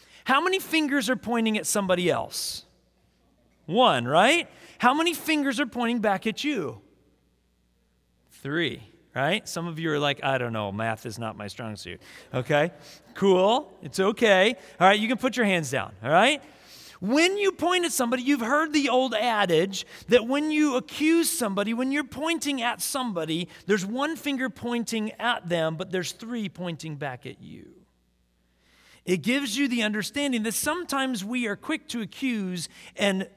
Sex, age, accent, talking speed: male, 40-59, American, 170 wpm